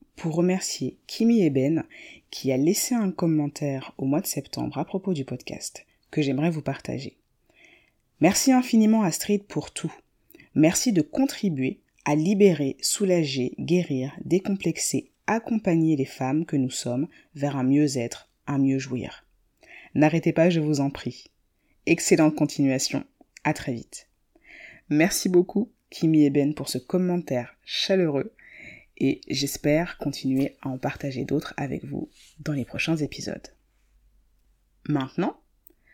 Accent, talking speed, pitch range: French, 130 wpm, 140-195 Hz